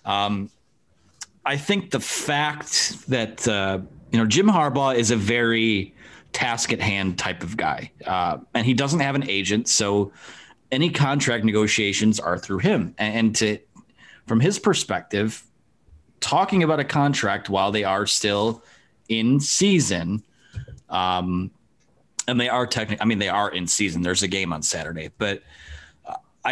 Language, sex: English, male